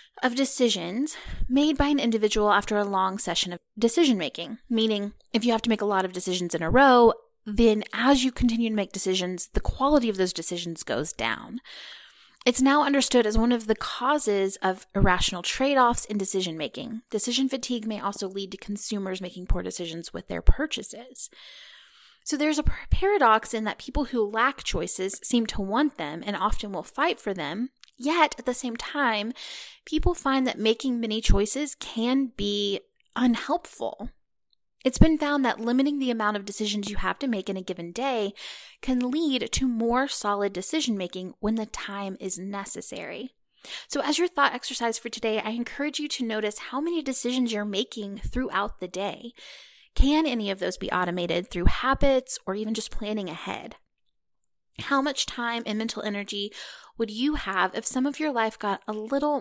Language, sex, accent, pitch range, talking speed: English, female, American, 200-265 Hz, 185 wpm